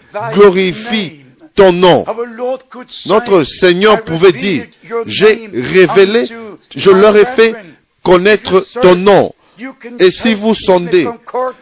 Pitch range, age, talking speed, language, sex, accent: 180-220 Hz, 50-69, 105 wpm, French, male, French